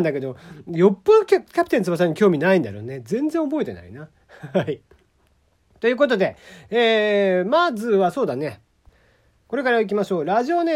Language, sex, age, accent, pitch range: Japanese, male, 40-59, native, 165-245 Hz